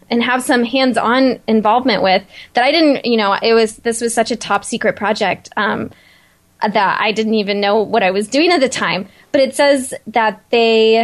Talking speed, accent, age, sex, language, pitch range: 210 wpm, American, 10-29, female, English, 205-245 Hz